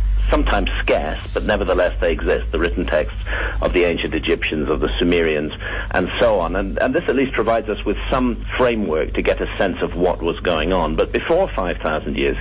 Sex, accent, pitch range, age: male, British, 90-105 Hz, 50-69